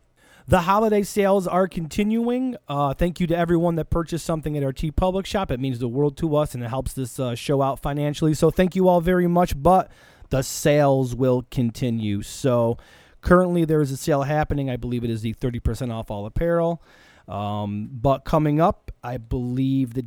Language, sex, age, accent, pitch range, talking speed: English, male, 30-49, American, 120-170 Hz, 195 wpm